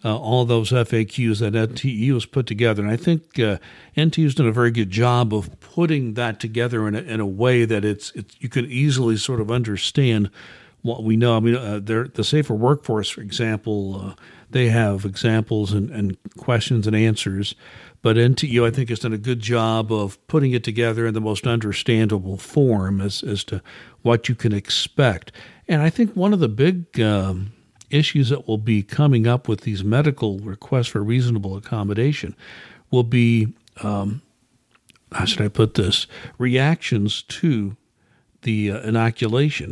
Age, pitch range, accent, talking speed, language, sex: 60-79, 110-130 Hz, American, 175 wpm, English, male